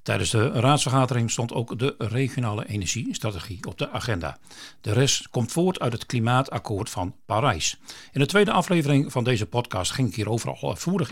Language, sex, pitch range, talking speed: Dutch, male, 105-135 Hz, 165 wpm